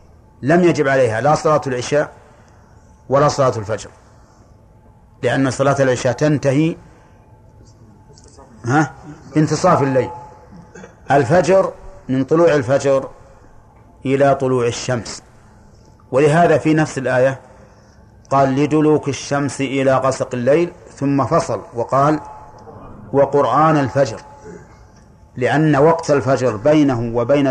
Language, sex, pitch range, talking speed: Arabic, male, 110-145 Hz, 95 wpm